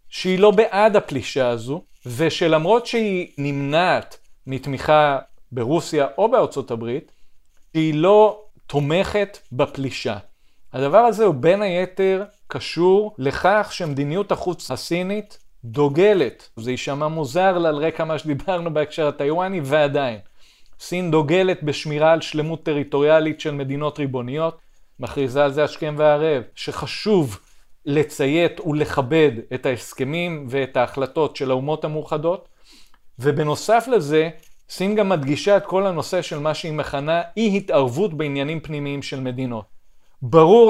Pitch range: 140-190 Hz